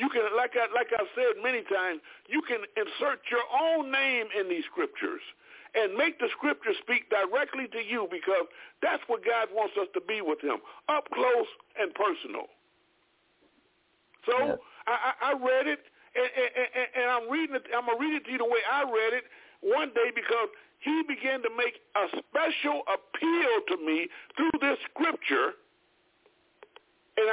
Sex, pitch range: male, 250-380 Hz